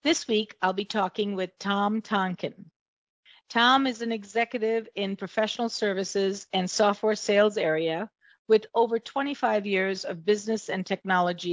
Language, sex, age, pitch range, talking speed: English, female, 50-69, 190-230 Hz, 140 wpm